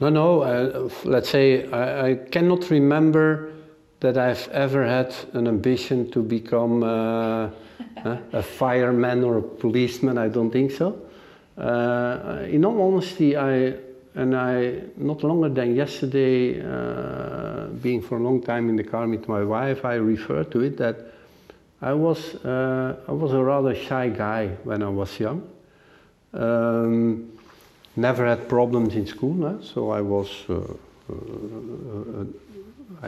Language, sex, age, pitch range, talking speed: English, male, 50-69, 105-130 Hz, 145 wpm